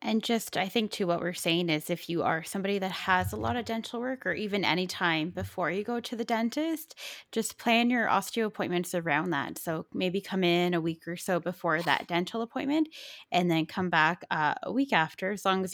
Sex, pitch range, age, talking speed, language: female, 165-190 Hz, 20-39, 230 wpm, English